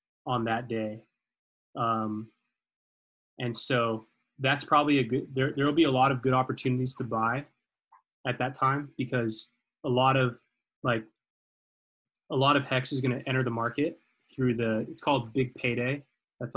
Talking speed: 165 wpm